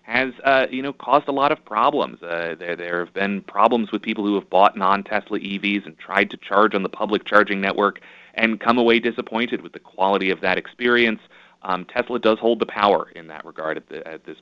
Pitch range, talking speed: 95-130 Hz, 225 wpm